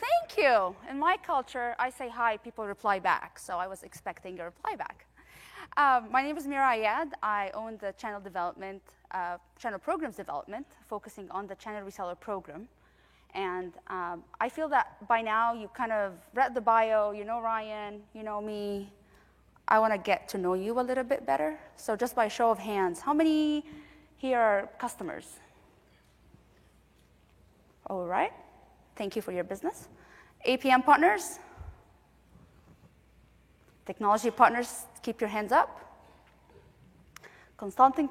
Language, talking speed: English, 150 wpm